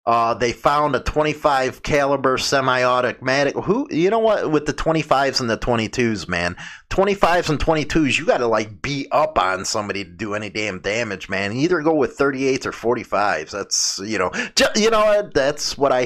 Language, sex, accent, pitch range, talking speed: English, male, American, 115-150 Hz, 185 wpm